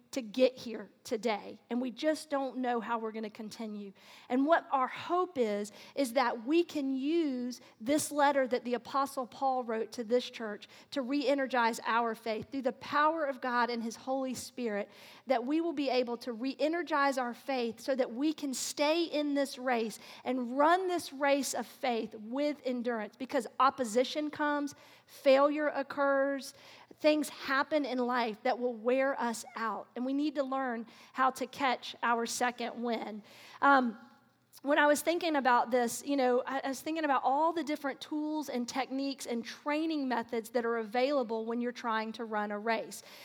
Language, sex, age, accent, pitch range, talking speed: English, female, 40-59, American, 240-285 Hz, 175 wpm